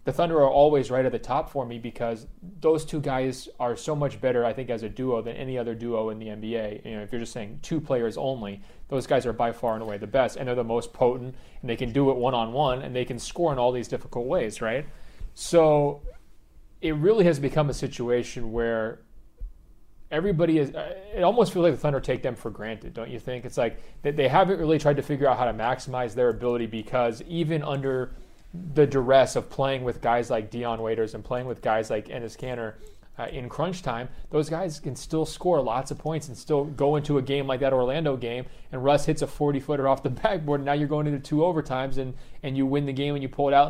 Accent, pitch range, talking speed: American, 120-145 Hz, 240 wpm